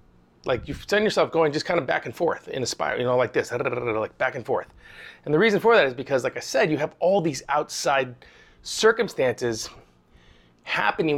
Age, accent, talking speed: 30-49, American, 205 wpm